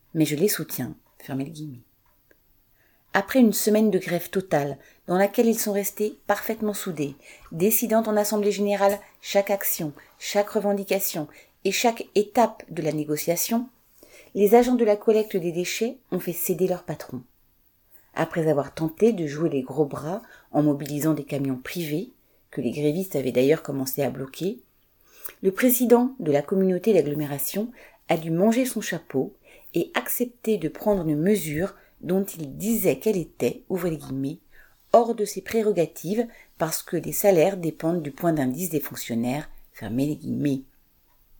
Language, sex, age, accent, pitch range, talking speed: French, female, 40-59, French, 150-215 Hz, 160 wpm